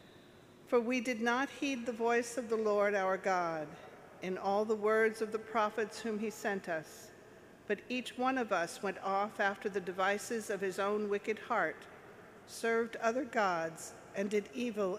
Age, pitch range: 50-69, 180-225 Hz